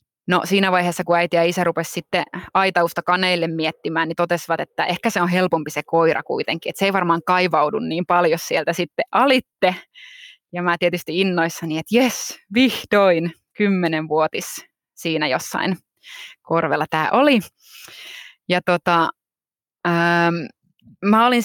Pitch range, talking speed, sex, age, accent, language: 165-205 Hz, 140 wpm, female, 20-39, native, Finnish